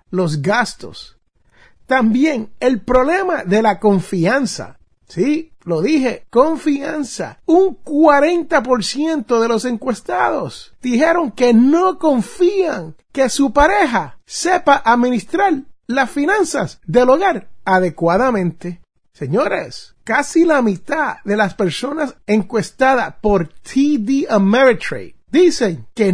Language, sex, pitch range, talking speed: Spanish, male, 215-295 Hz, 100 wpm